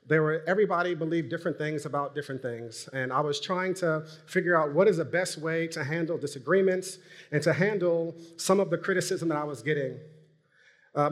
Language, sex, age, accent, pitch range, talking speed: English, male, 30-49, American, 145-175 Hz, 195 wpm